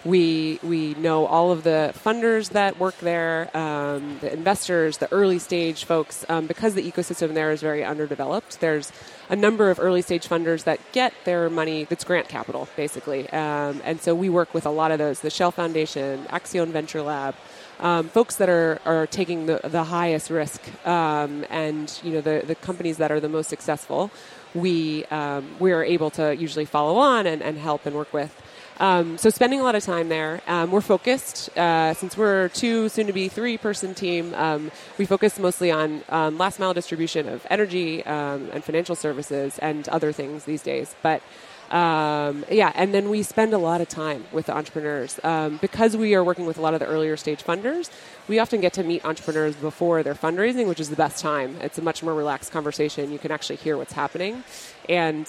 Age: 30-49